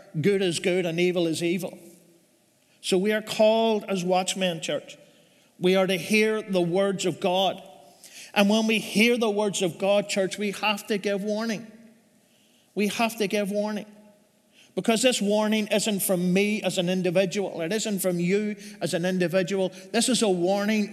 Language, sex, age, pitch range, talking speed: English, male, 50-69, 185-215 Hz, 175 wpm